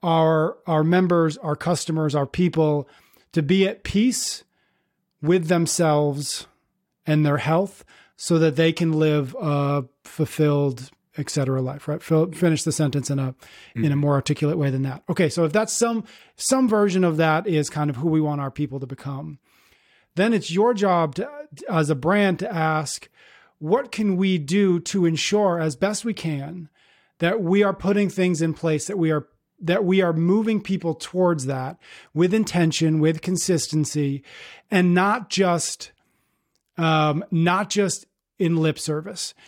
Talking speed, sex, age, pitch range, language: 165 wpm, male, 30-49, 155-190 Hz, English